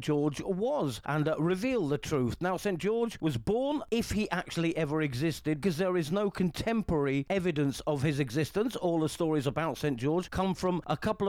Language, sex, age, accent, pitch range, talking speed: English, male, 40-59, British, 145-185 Hz, 190 wpm